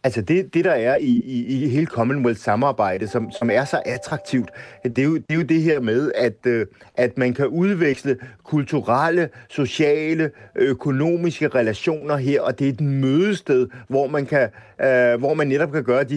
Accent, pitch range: native, 130-170 Hz